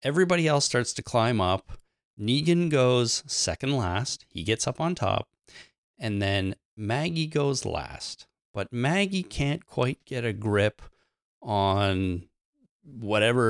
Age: 30-49